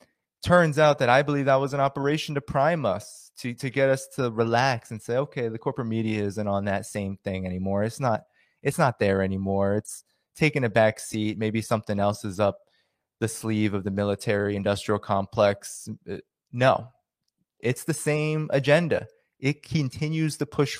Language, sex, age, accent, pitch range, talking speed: English, male, 20-39, American, 105-140 Hz, 180 wpm